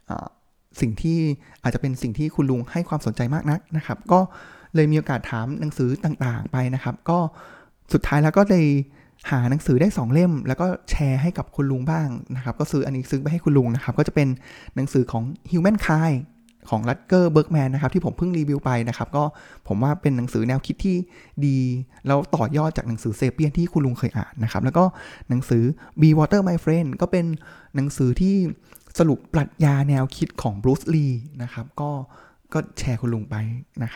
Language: Thai